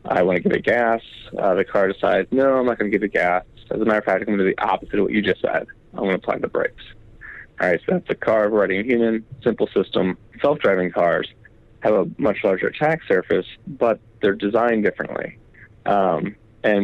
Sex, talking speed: male, 235 wpm